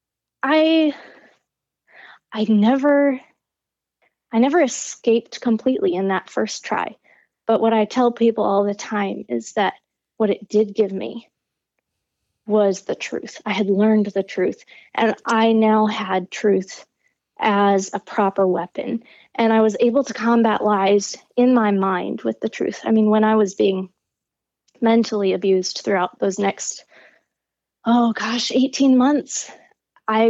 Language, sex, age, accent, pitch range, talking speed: English, female, 20-39, American, 200-245 Hz, 145 wpm